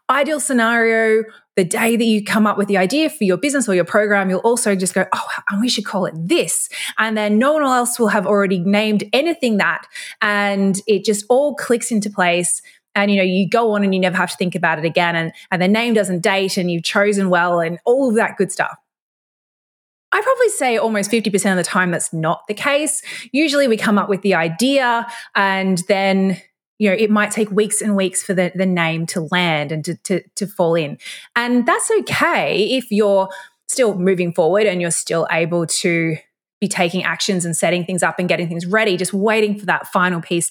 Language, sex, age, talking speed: English, female, 20-39, 220 wpm